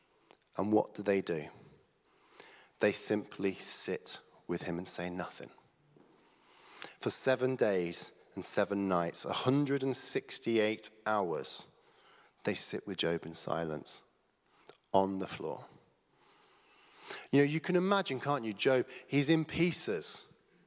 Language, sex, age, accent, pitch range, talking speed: English, male, 40-59, British, 105-160 Hz, 120 wpm